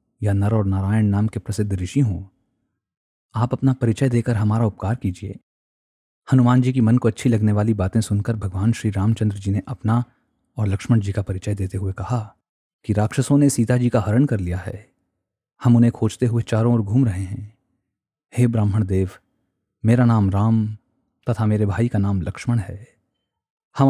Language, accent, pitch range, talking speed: Hindi, native, 100-120 Hz, 185 wpm